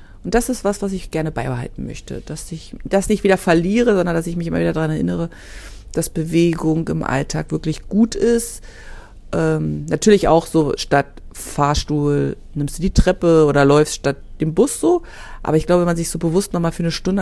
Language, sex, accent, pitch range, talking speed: German, female, German, 125-180 Hz, 200 wpm